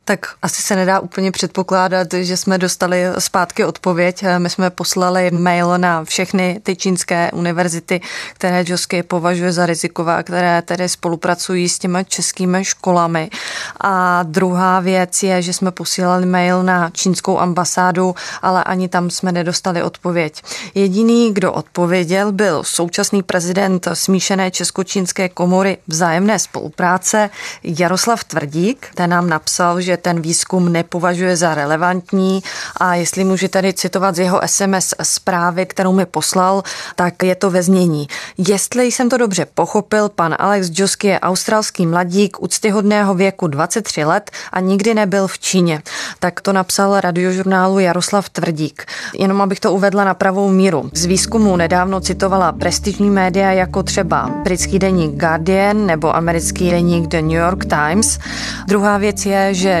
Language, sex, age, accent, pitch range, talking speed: Czech, female, 20-39, native, 175-195 Hz, 145 wpm